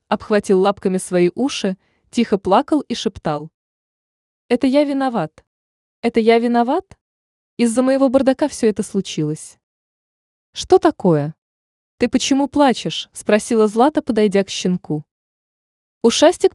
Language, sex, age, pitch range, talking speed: Russian, female, 20-39, 180-270 Hz, 110 wpm